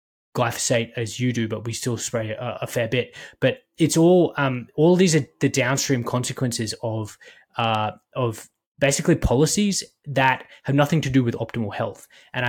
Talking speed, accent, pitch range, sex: 175 wpm, Australian, 115-135 Hz, male